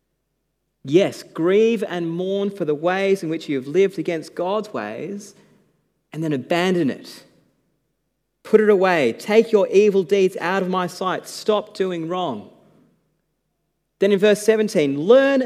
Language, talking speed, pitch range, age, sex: English, 150 wpm, 145-205 Hz, 30-49, male